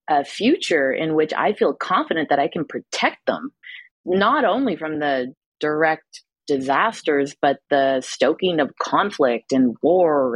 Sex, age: female, 30-49